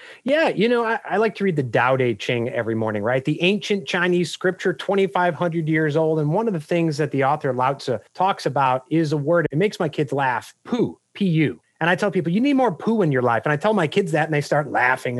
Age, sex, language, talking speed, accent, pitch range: 30-49, male, English, 255 wpm, American, 145-190 Hz